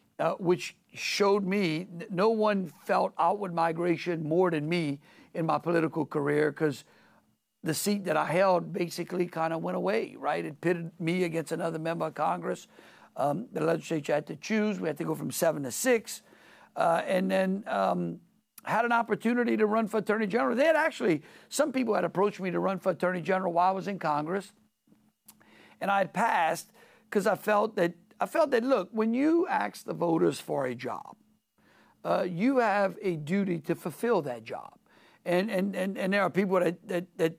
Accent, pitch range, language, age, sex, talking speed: American, 165-205 Hz, English, 60-79, male, 190 wpm